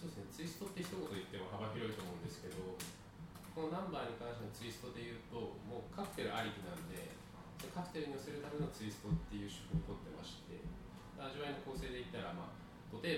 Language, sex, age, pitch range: Japanese, male, 20-39, 95-150 Hz